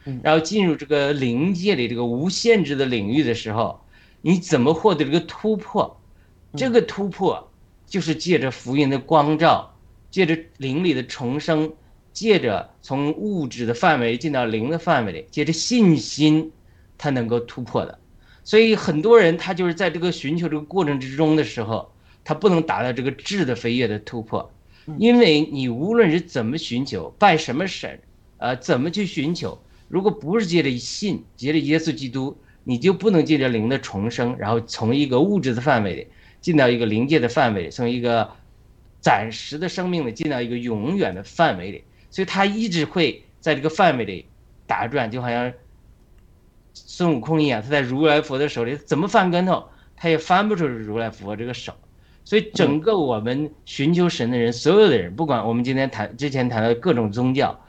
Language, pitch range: Chinese, 120-170 Hz